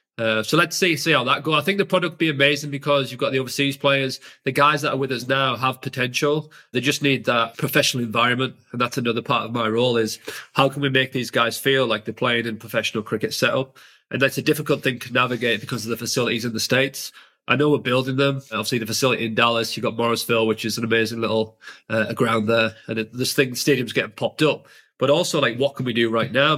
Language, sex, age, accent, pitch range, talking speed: English, male, 30-49, British, 120-140 Hz, 250 wpm